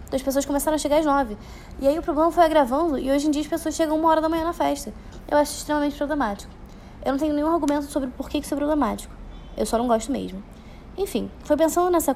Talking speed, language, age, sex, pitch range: 250 wpm, Portuguese, 10-29, female, 245-310 Hz